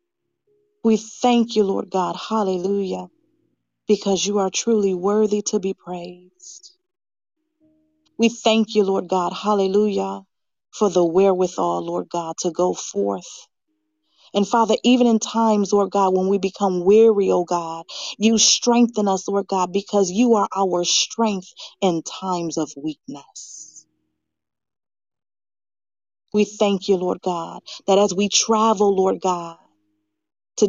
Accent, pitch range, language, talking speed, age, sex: American, 185-225 Hz, English, 135 wpm, 40-59, female